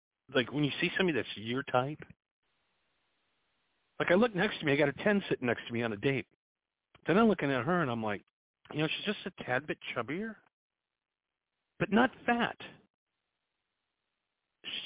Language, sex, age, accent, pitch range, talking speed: English, male, 50-69, American, 120-180 Hz, 180 wpm